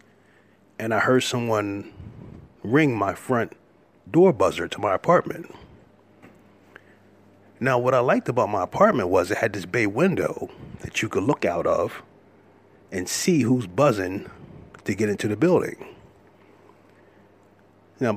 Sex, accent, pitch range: male, American, 100-120 Hz